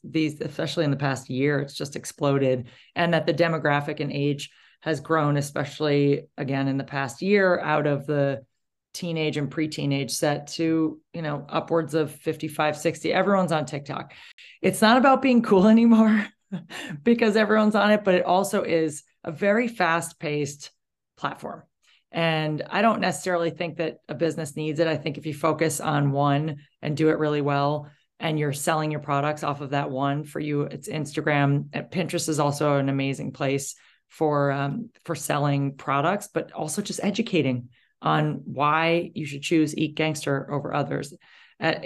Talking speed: 170 wpm